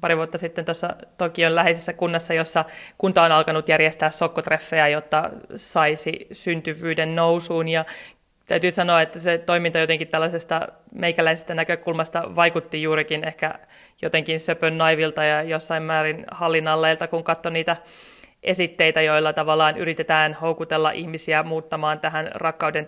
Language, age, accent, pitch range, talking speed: Finnish, 30-49, native, 160-170 Hz, 130 wpm